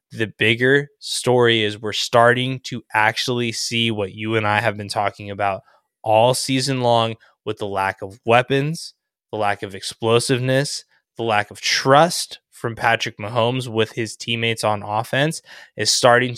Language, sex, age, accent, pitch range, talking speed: English, male, 20-39, American, 105-120 Hz, 160 wpm